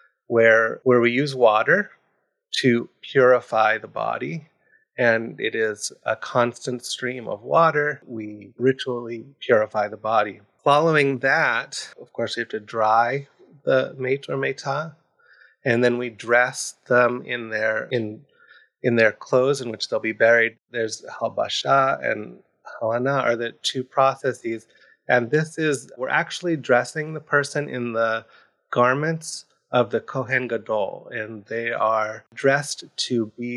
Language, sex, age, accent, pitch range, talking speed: English, male, 30-49, American, 115-135 Hz, 140 wpm